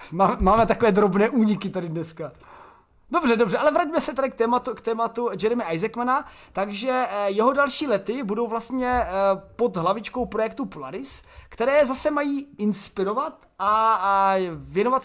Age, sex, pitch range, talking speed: 30-49, male, 195-270 Hz, 135 wpm